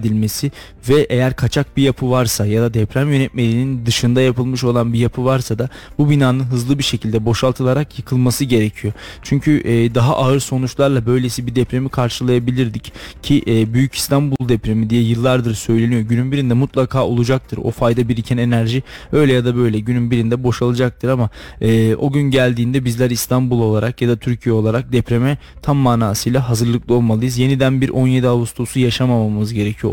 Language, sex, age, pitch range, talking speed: Turkish, male, 20-39, 115-130 Hz, 160 wpm